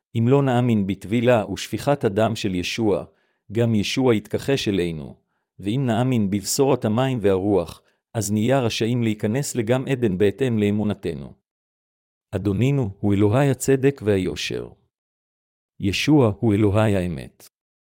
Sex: male